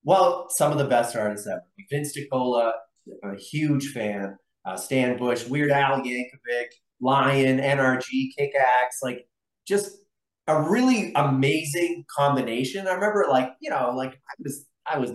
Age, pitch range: 30-49, 120-160 Hz